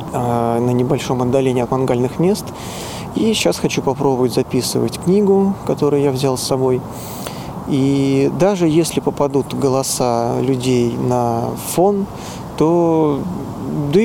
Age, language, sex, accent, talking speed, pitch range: 20-39, Russian, male, native, 115 wpm, 125-145 Hz